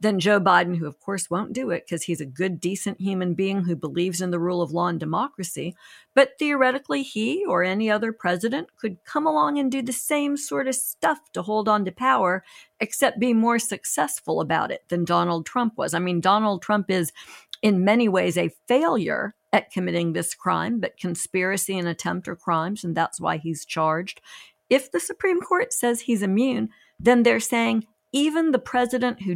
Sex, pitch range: female, 175-240 Hz